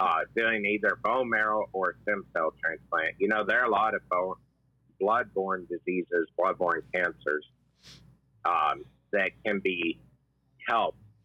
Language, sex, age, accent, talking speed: English, male, 50-69, American, 140 wpm